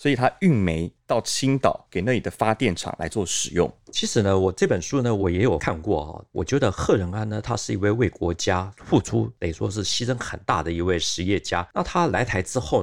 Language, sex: Chinese, male